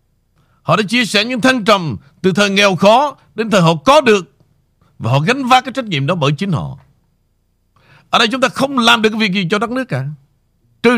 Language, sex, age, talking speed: Vietnamese, male, 60-79, 230 wpm